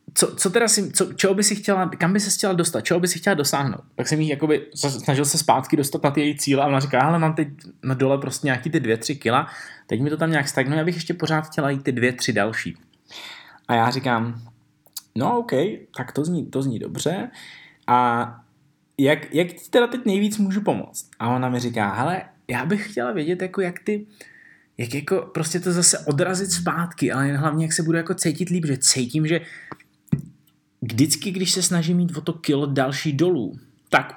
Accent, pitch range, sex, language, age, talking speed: native, 125-165 Hz, male, Czech, 20-39, 205 wpm